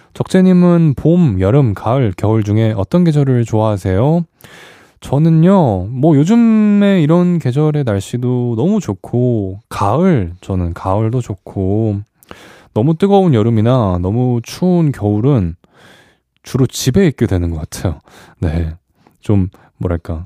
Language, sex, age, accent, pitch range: Korean, male, 20-39, native, 100-145 Hz